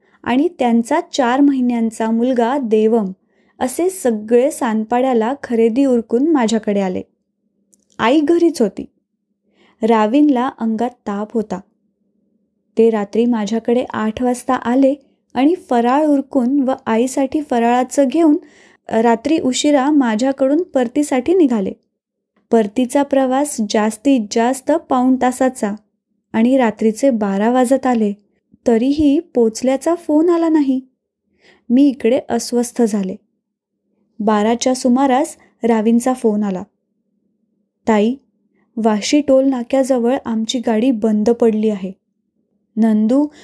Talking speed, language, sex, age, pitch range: 100 wpm, Marathi, female, 20-39, 220-270 Hz